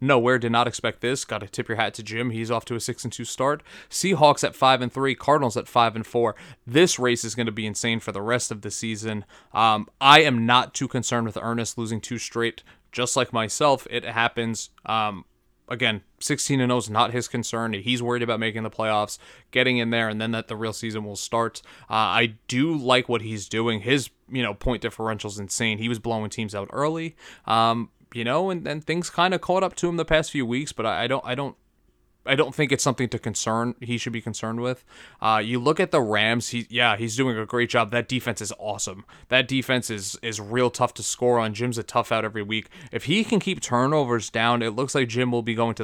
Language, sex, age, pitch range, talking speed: English, male, 20-39, 110-130 Hz, 240 wpm